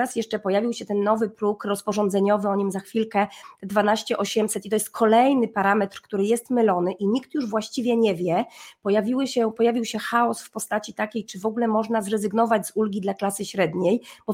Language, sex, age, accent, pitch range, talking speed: Polish, female, 20-39, native, 200-260 Hz, 195 wpm